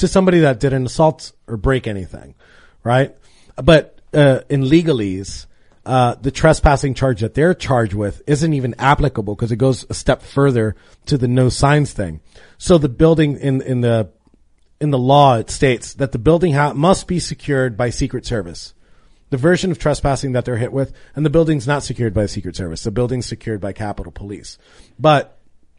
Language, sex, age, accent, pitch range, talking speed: English, male, 30-49, American, 120-155 Hz, 185 wpm